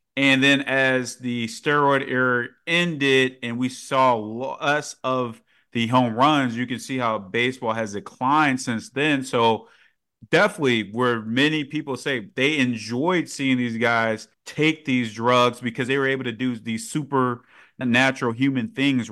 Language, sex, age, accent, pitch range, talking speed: English, male, 30-49, American, 110-130 Hz, 155 wpm